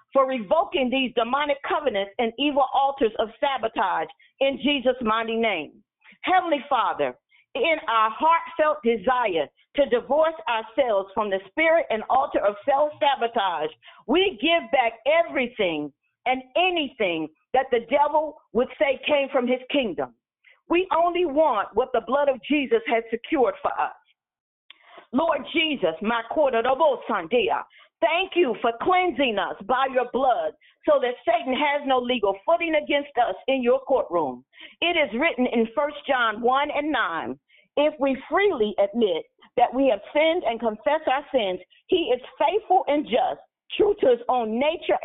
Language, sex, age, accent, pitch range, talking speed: English, female, 50-69, American, 235-310 Hz, 150 wpm